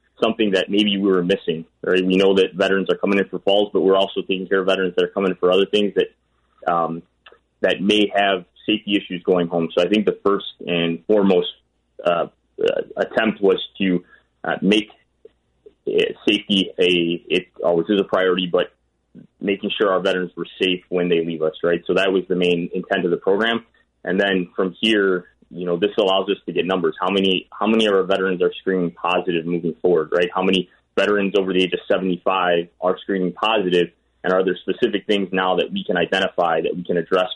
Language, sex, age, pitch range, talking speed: English, male, 20-39, 90-100 Hz, 210 wpm